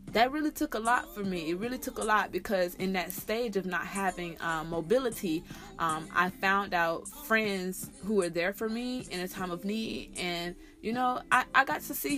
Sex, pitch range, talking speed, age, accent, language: female, 170-205 Hz, 215 wpm, 20-39, American, English